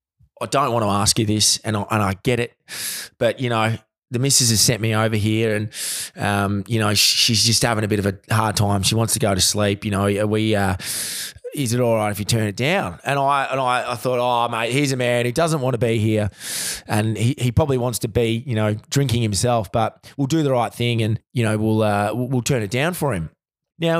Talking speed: 255 wpm